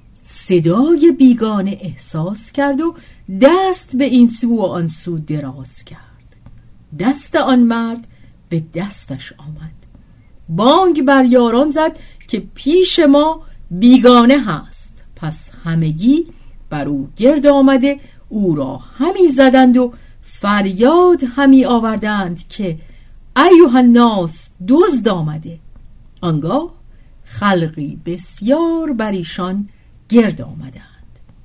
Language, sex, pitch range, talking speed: Persian, female, 160-275 Hz, 100 wpm